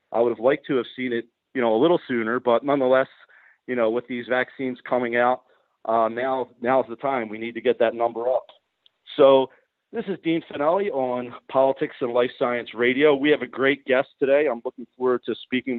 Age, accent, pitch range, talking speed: 40-59, American, 115-130 Hz, 215 wpm